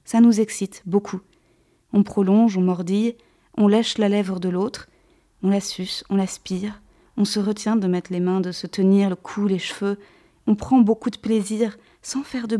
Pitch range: 185-215 Hz